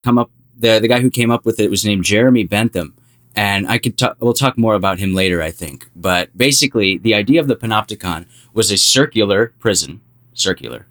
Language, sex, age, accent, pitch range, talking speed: English, male, 20-39, American, 95-120 Hz, 210 wpm